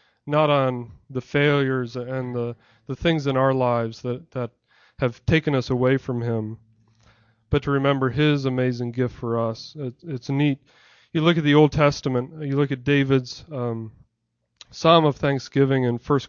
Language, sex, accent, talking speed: English, male, American, 170 wpm